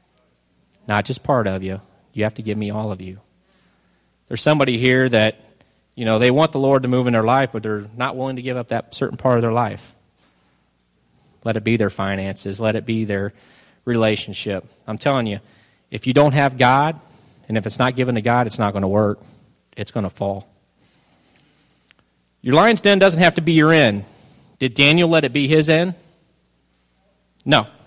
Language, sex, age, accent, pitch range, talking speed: English, male, 30-49, American, 100-130 Hz, 200 wpm